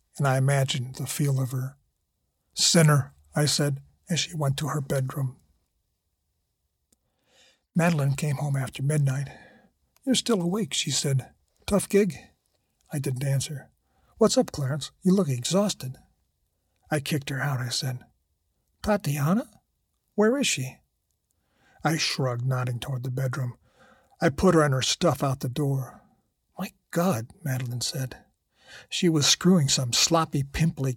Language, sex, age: English, male, 50-69